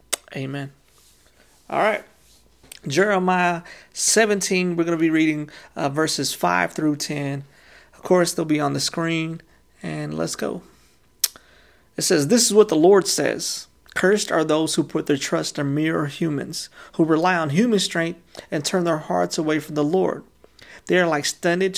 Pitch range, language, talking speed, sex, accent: 145-170 Hz, English, 165 wpm, male, American